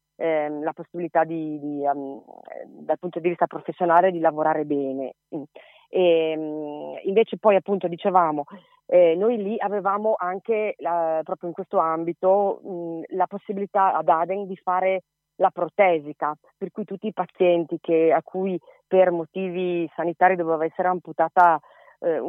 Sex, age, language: female, 30-49, Italian